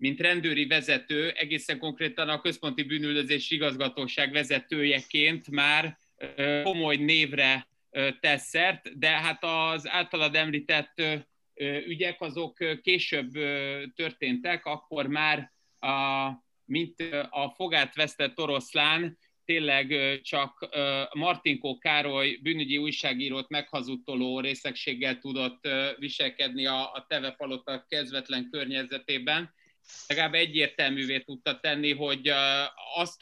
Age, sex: 30-49, male